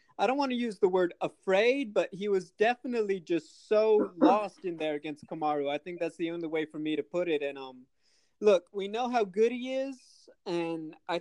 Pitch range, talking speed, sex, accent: 170-215 Hz, 220 wpm, male, American